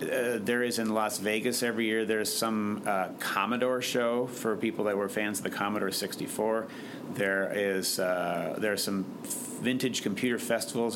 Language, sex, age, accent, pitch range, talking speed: English, male, 30-49, American, 100-110 Hz, 170 wpm